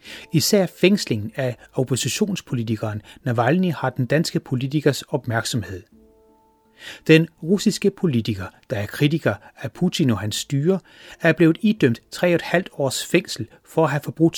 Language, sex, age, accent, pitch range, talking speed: Danish, male, 30-49, native, 115-170 Hz, 130 wpm